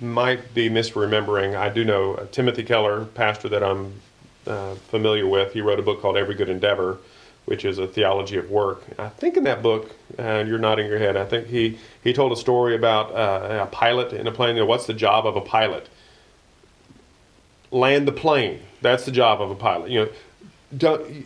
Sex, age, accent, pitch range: male, 40-59, American, 110-130 Hz